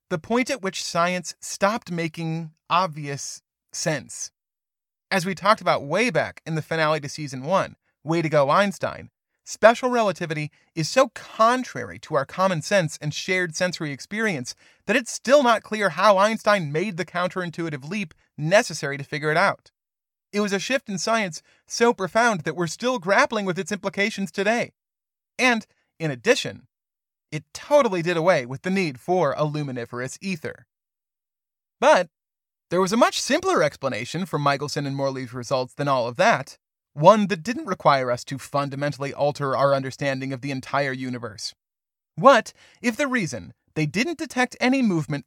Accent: American